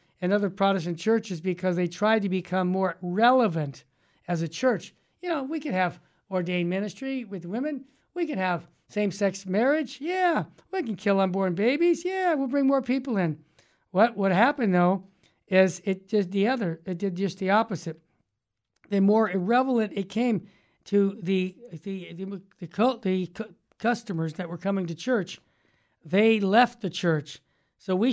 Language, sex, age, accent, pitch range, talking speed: English, male, 60-79, American, 175-215 Hz, 170 wpm